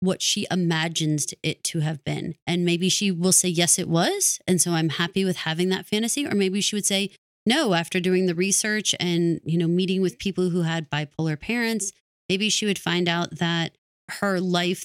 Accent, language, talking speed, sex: American, English, 205 wpm, female